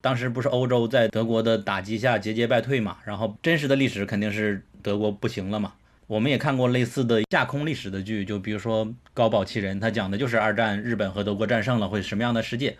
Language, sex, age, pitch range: Chinese, male, 20-39, 105-130 Hz